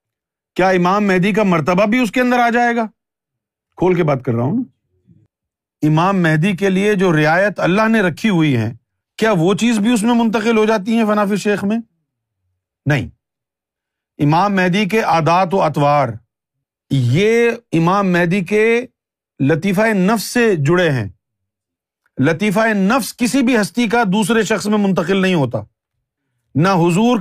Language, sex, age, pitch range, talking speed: Urdu, male, 50-69, 155-230 Hz, 160 wpm